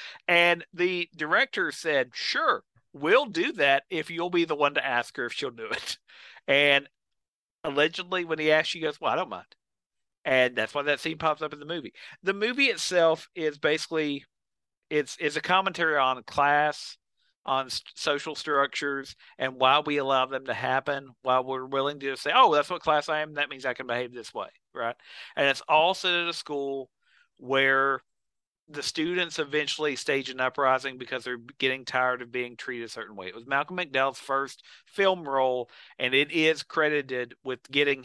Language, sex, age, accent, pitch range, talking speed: English, male, 50-69, American, 130-155 Hz, 190 wpm